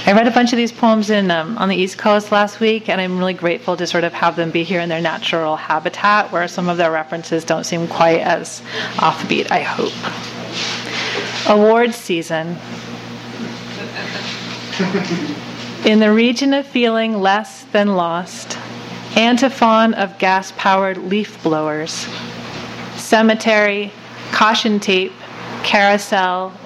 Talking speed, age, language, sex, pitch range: 135 wpm, 30-49, English, female, 165-210 Hz